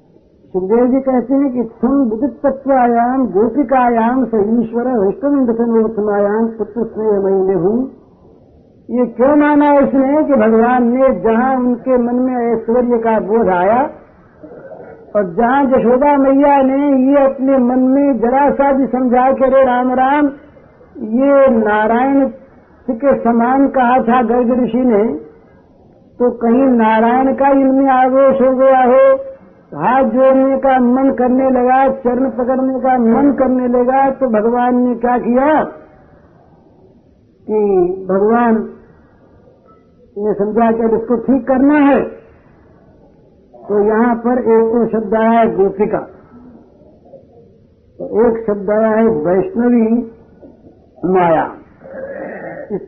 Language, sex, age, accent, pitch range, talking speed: Hindi, female, 60-79, native, 225-265 Hz, 125 wpm